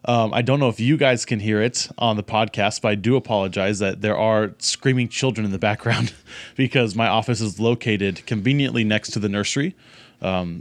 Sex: male